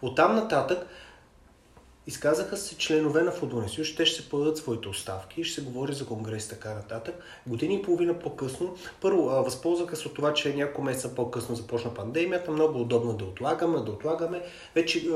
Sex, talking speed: male, 175 wpm